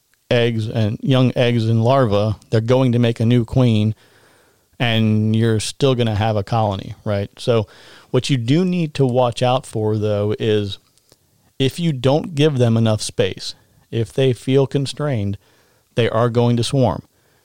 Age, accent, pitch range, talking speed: 40-59, American, 110-135 Hz, 170 wpm